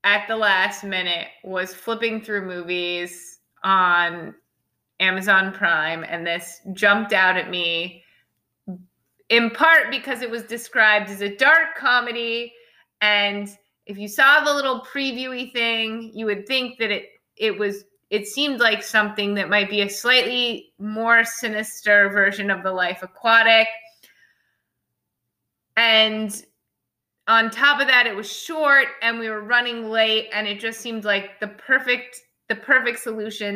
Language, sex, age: English, female, 20-39